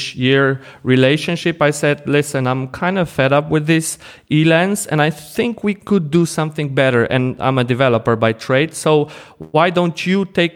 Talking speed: 180 wpm